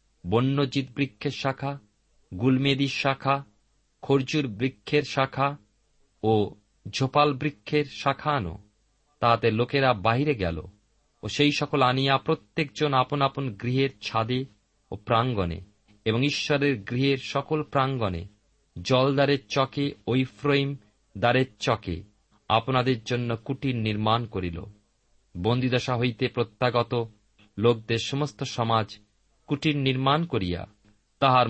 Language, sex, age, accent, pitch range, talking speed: Bengali, male, 40-59, native, 105-140 Hz, 105 wpm